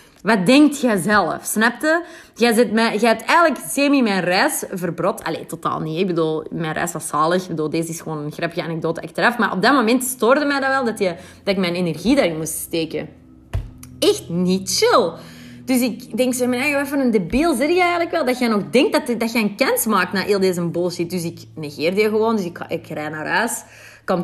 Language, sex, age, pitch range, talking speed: Dutch, female, 30-49, 185-250 Hz, 230 wpm